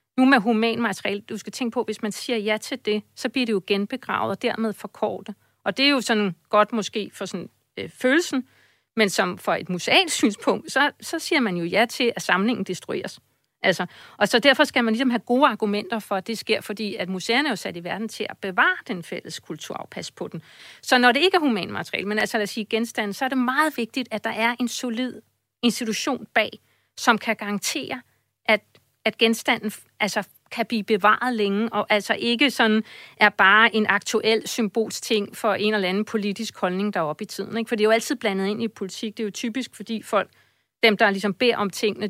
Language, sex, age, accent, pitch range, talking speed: Danish, female, 50-69, native, 200-235 Hz, 220 wpm